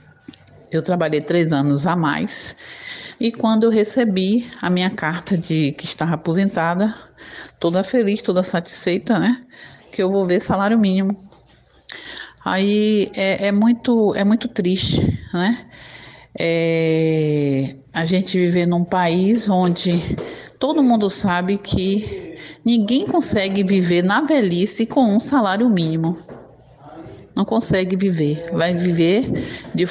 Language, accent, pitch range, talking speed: Portuguese, Brazilian, 165-220 Hz, 120 wpm